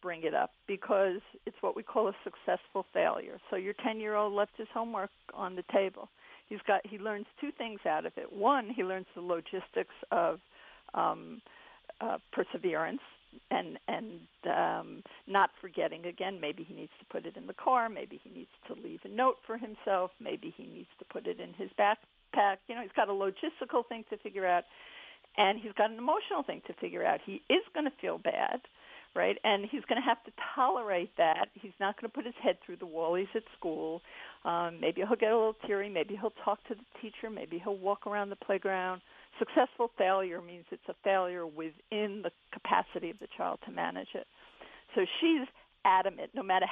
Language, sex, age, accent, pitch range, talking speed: English, female, 50-69, American, 190-235 Hz, 205 wpm